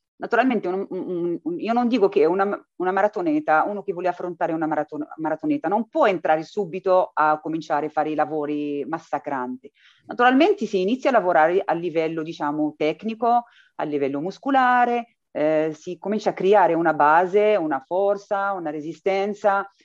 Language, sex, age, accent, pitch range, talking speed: Italian, female, 30-49, native, 155-205 Hz, 140 wpm